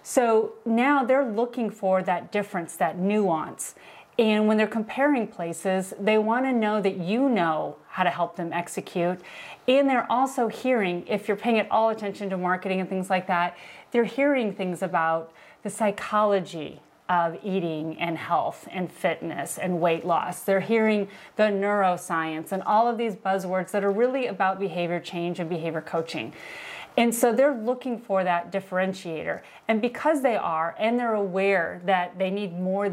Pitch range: 175-220 Hz